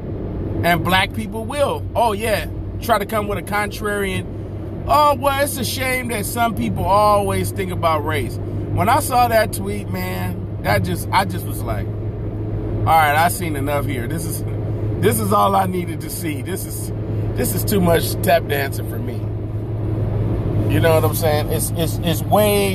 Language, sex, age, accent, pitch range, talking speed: English, male, 40-59, American, 105-115 Hz, 185 wpm